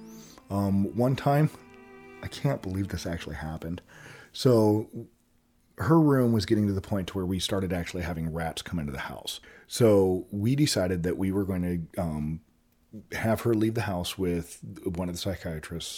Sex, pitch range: male, 80-105 Hz